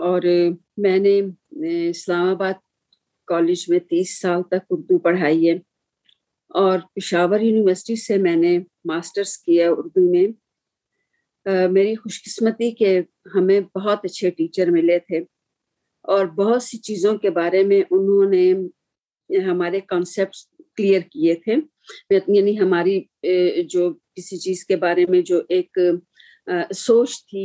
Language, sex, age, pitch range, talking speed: Urdu, female, 50-69, 180-215 Hz, 130 wpm